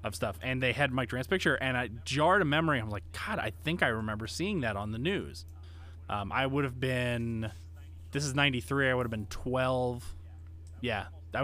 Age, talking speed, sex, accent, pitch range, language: 20-39, 215 wpm, male, American, 85-130 Hz, English